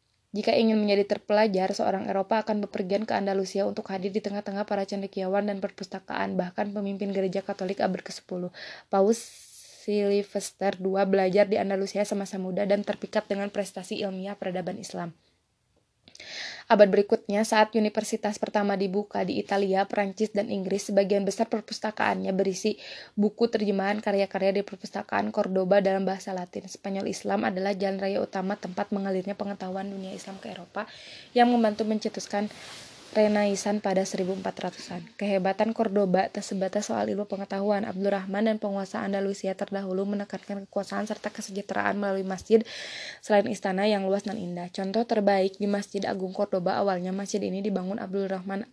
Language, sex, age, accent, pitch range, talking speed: Indonesian, female, 20-39, native, 195-210 Hz, 145 wpm